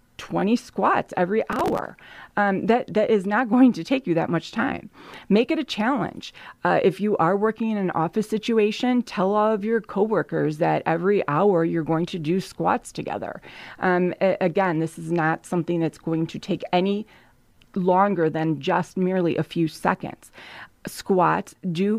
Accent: American